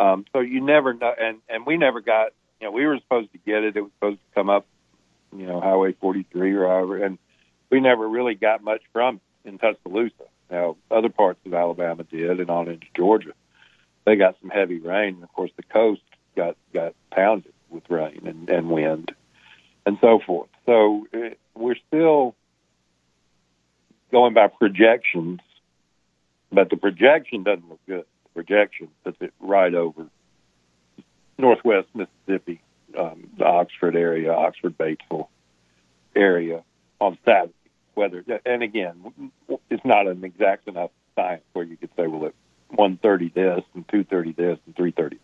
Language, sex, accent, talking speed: English, male, American, 165 wpm